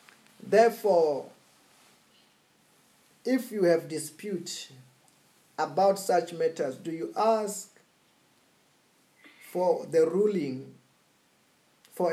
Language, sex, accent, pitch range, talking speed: English, male, South African, 150-200 Hz, 75 wpm